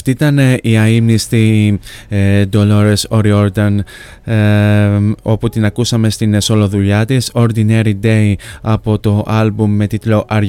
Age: 20-39